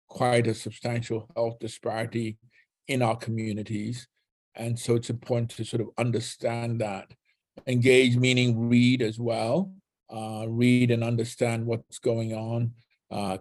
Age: 50-69